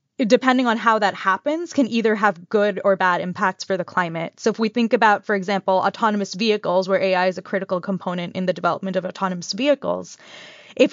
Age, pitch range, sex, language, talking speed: 20-39, 190-225 Hz, female, English, 205 wpm